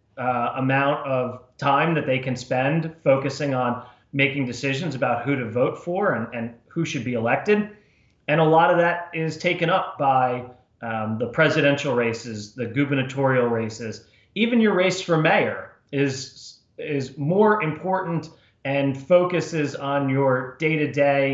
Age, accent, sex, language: 30-49, American, male, English